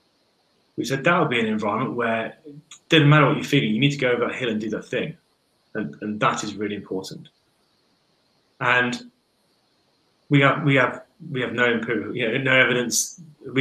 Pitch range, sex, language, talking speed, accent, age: 110-140 Hz, male, English, 200 wpm, British, 30-49